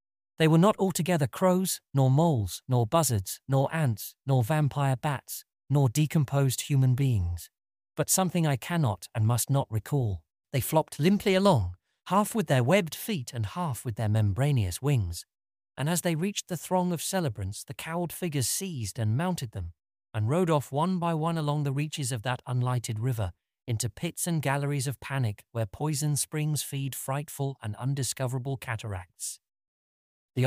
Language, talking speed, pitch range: English, 165 wpm, 110-150 Hz